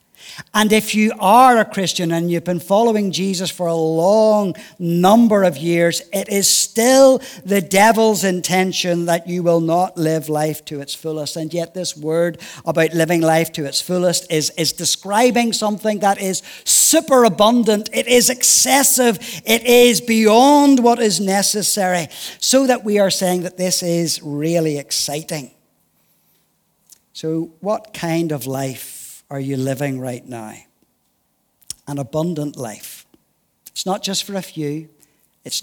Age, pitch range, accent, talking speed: 50-69, 150-195 Hz, British, 150 wpm